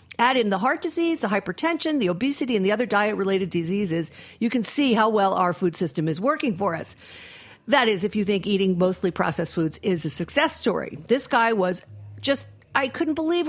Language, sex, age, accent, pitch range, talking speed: English, female, 50-69, American, 200-310 Hz, 210 wpm